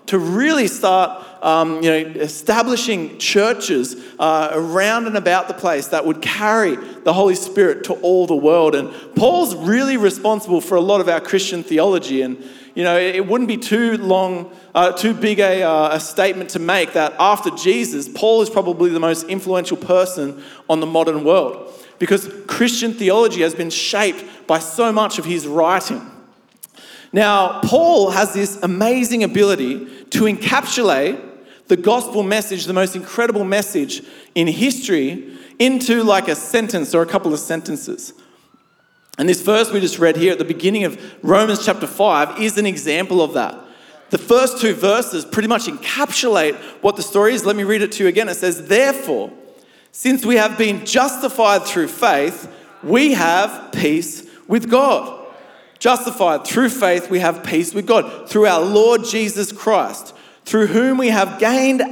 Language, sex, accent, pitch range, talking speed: English, male, Australian, 170-230 Hz, 170 wpm